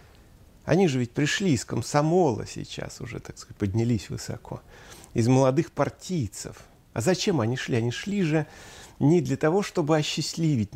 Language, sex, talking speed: Russian, male, 150 wpm